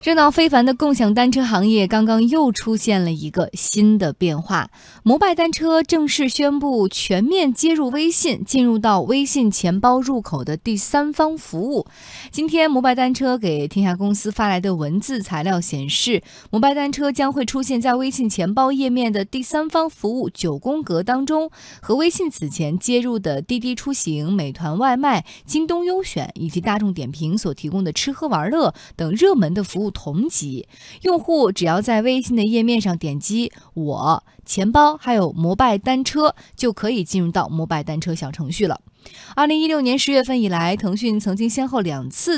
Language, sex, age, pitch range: Chinese, female, 20-39, 180-265 Hz